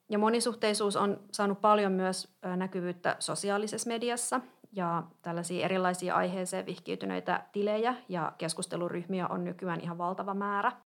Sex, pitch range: female, 180-210 Hz